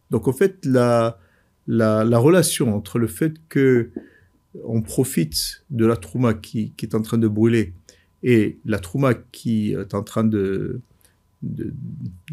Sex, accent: male, French